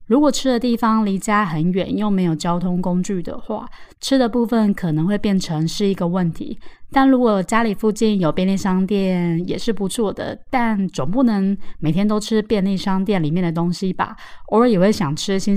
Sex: female